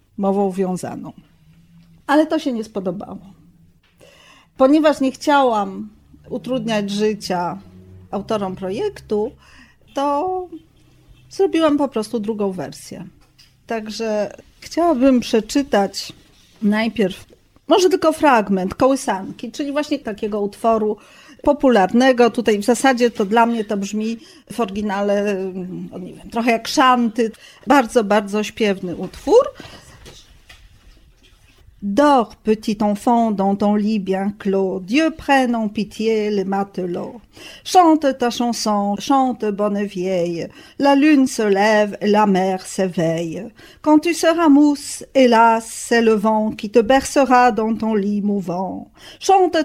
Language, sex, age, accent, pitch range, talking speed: Polish, female, 40-59, native, 200-260 Hz, 110 wpm